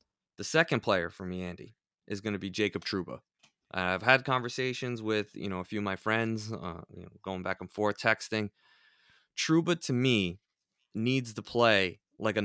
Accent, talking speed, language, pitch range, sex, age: American, 190 wpm, English, 100-120 Hz, male, 20-39